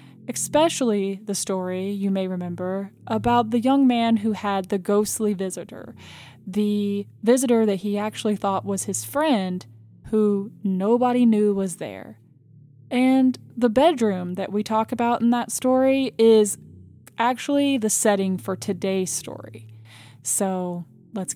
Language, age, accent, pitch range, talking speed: English, 10-29, American, 190-240 Hz, 135 wpm